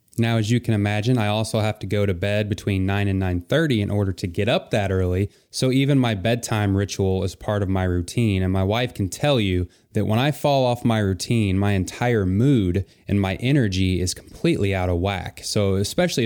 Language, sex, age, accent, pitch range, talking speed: English, male, 20-39, American, 95-115 Hz, 220 wpm